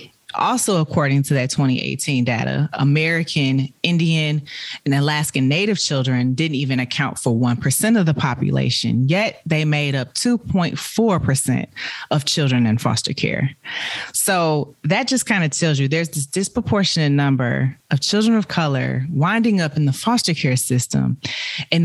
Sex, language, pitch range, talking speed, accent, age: female, English, 135-170 Hz, 145 wpm, American, 30-49